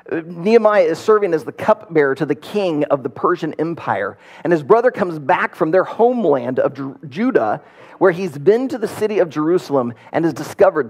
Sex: male